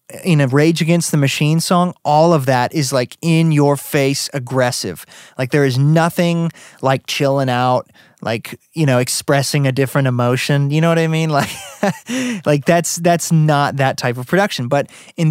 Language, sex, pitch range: English, male, 135-170 Hz